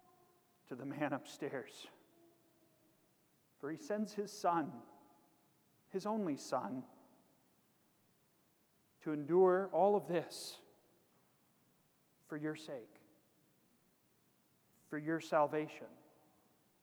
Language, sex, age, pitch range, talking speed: English, male, 40-59, 150-195 Hz, 80 wpm